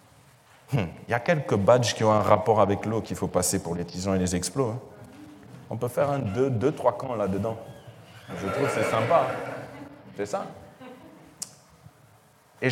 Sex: male